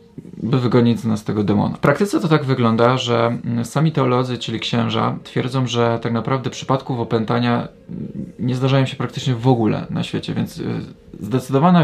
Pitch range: 115-140 Hz